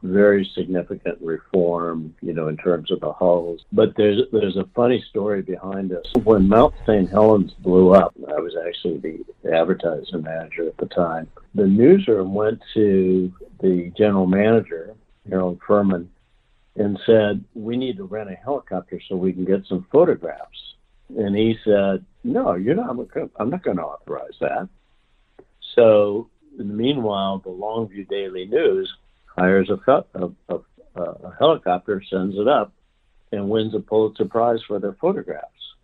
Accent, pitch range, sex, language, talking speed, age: American, 90-105 Hz, male, English, 150 wpm, 60-79